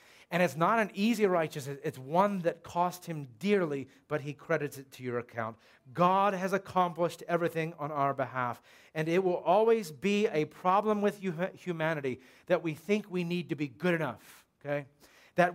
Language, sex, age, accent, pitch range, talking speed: English, male, 40-59, American, 145-180 Hz, 180 wpm